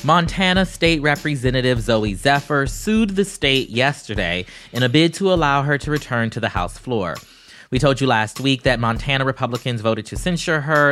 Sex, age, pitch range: male, 20-39, 110-150 Hz